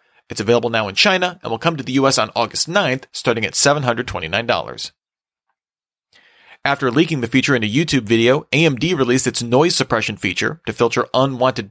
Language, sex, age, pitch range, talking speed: English, male, 40-59, 115-145 Hz, 175 wpm